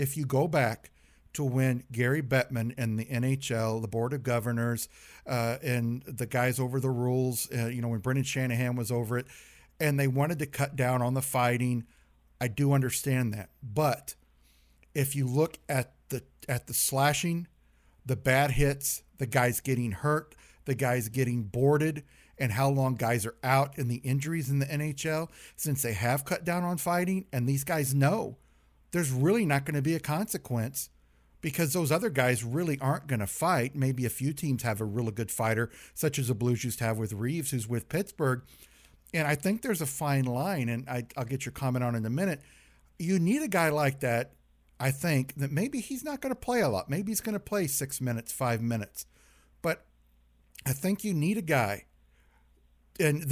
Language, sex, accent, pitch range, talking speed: English, male, American, 115-150 Hz, 195 wpm